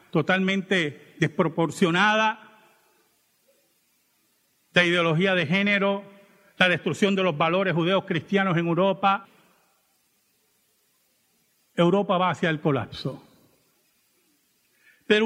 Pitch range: 195-250 Hz